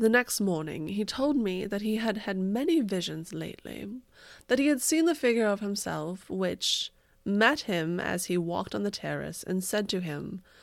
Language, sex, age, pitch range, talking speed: English, female, 20-39, 180-245 Hz, 190 wpm